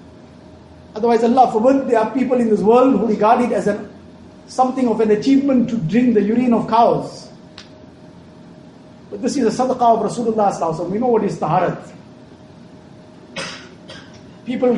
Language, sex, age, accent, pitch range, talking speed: English, male, 50-69, Indian, 210-255 Hz, 155 wpm